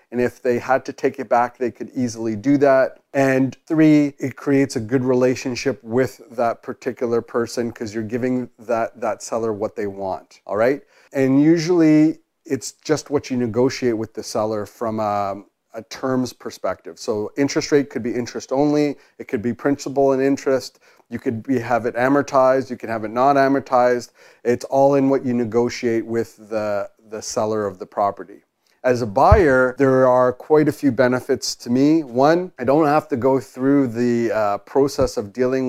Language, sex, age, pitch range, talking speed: English, male, 40-59, 120-140 Hz, 185 wpm